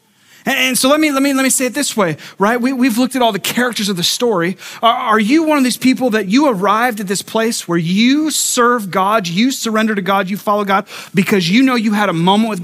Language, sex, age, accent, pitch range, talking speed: English, male, 30-49, American, 190-250 Hz, 260 wpm